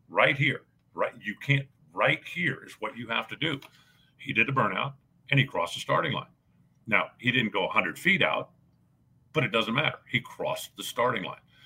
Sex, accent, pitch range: male, American, 120-145 Hz